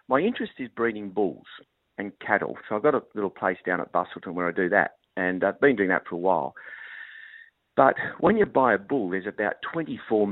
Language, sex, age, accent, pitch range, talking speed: English, male, 50-69, Australian, 95-110 Hz, 215 wpm